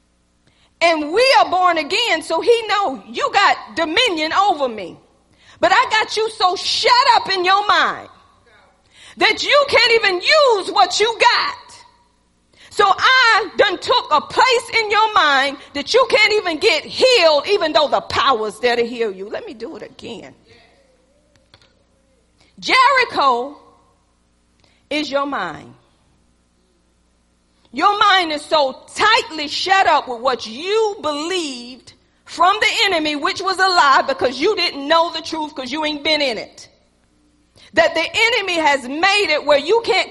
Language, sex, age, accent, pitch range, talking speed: English, female, 40-59, American, 270-405 Hz, 155 wpm